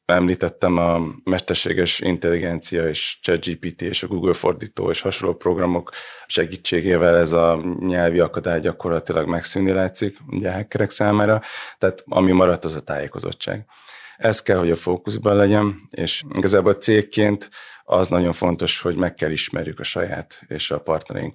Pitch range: 80-95 Hz